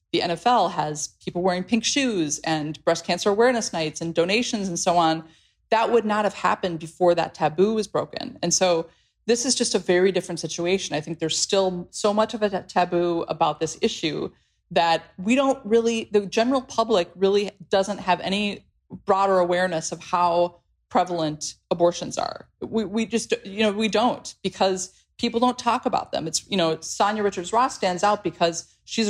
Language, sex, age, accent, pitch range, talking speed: English, female, 30-49, American, 165-205 Hz, 180 wpm